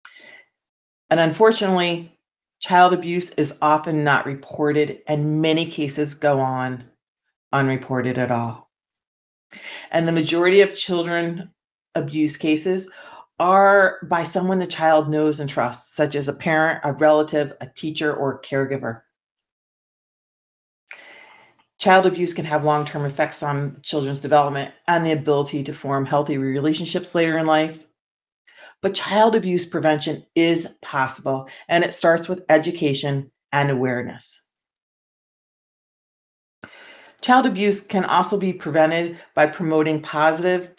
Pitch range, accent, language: 150-180 Hz, American, English